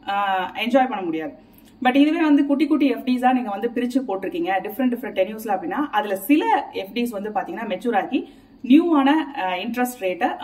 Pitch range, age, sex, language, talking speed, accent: 195-275 Hz, 30-49, female, Tamil, 85 wpm, native